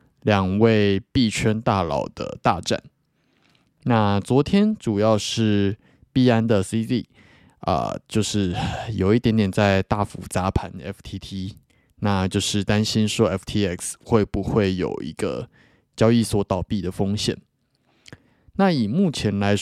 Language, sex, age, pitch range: Chinese, male, 20-39, 100-115 Hz